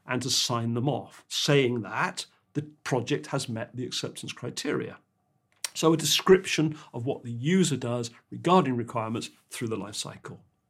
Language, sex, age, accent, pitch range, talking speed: English, male, 50-69, British, 120-150 Hz, 155 wpm